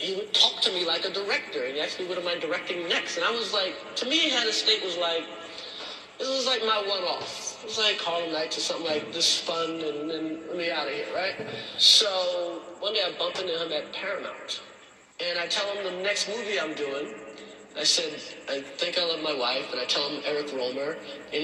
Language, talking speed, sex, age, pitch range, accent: English, 240 wpm, male, 30-49, 150-210 Hz, American